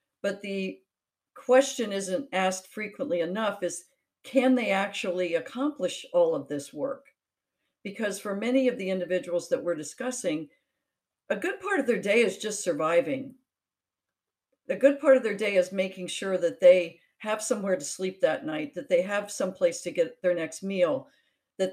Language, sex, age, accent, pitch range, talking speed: English, female, 50-69, American, 180-260 Hz, 170 wpm